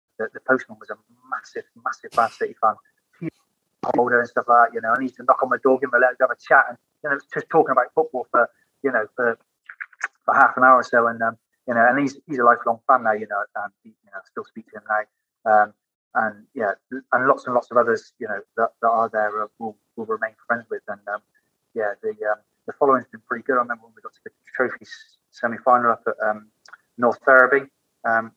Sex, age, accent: male, 30-49, British